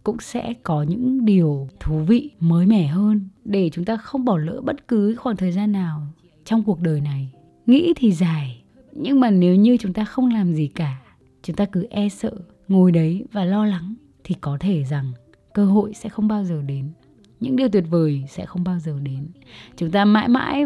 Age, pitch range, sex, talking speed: 20-39, 155-215 Hz, female, 210 wpm